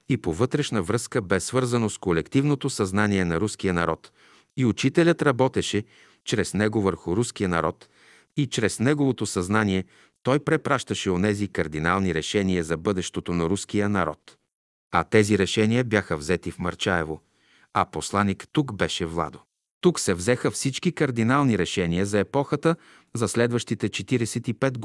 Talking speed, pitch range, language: 140 wpm, 95-125 Hz, Bulgarian